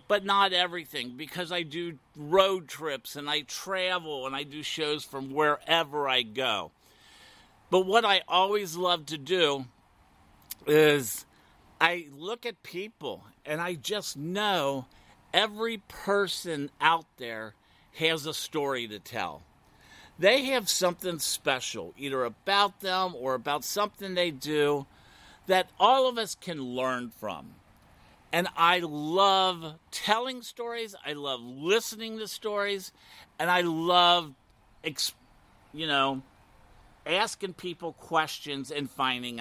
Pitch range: 135-185 Hz